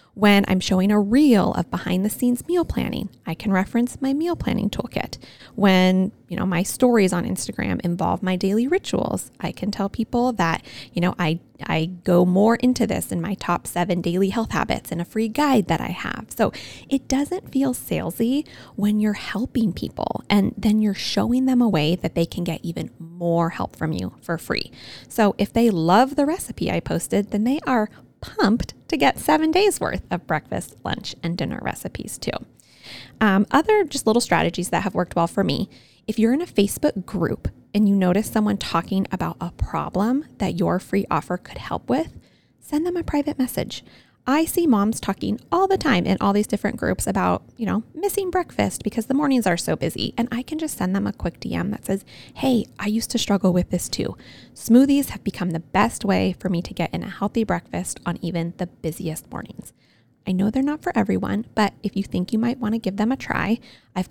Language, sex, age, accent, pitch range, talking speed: English, female, 20-39, American, 185-250 Hz, 210 wpm